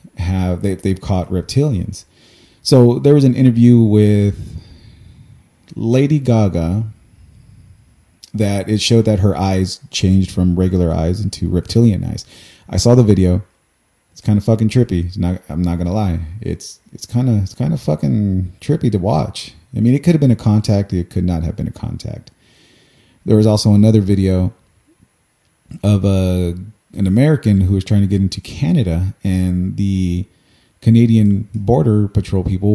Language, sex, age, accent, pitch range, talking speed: English, male, 30-49, American, 95-130 Hz, 165 wpm